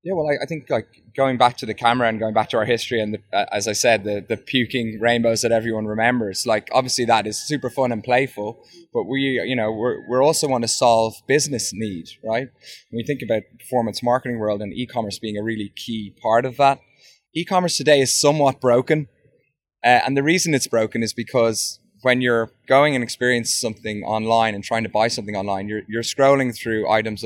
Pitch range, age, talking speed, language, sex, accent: 110-125 Hz, 20-39, 215 wpm, English, male, British